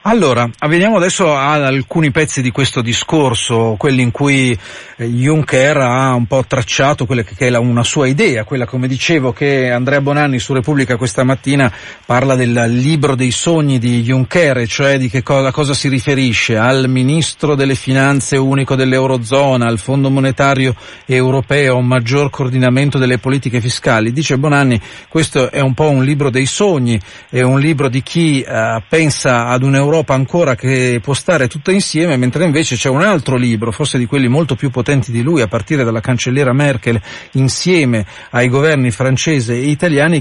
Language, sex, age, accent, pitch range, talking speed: Italian, male, 40-59, native, 125-150 Hz, 170 wpm